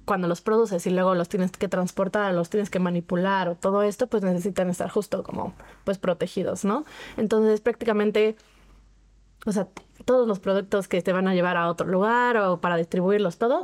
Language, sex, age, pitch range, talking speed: Spanish, female, 20-39, 185-225 Hz, 195 wpm